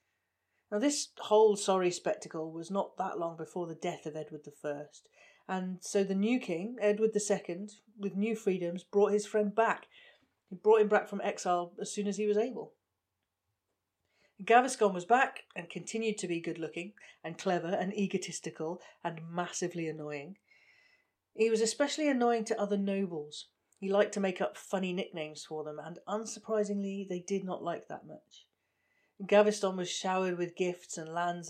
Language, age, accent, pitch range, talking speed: English, 40-59, British, 165-210 Hz, 165 wpm